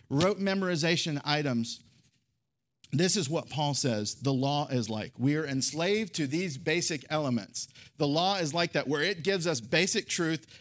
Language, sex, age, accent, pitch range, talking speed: English, male, 50-69, American, 125-165 Hz, 170 wpm